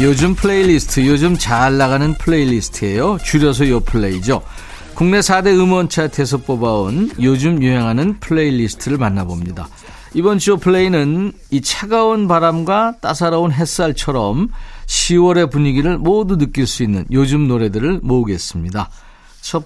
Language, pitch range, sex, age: Korean, 120-175 Hz, male, 40-59